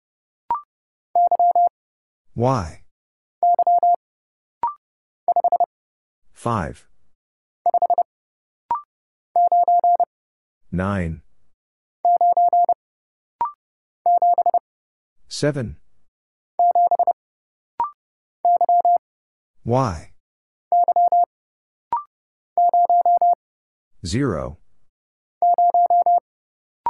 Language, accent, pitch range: English, American, 235-350 Hz